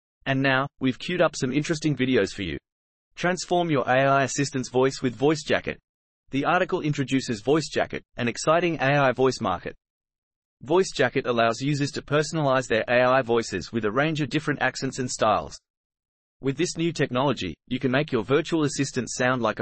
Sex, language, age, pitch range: male, English, 30-49, 120-145 Hz